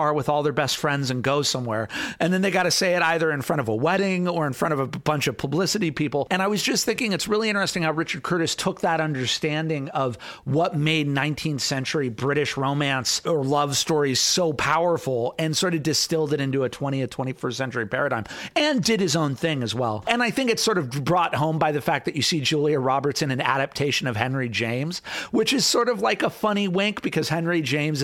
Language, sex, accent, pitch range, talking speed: English, male, American, 130-170 Hz, 230 wpm